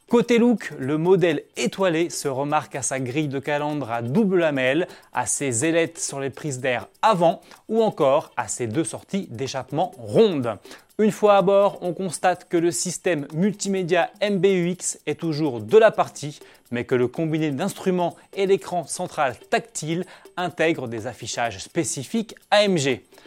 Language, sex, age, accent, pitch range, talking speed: French, male, 20-39, French, 135-185 Hz, 155 wpm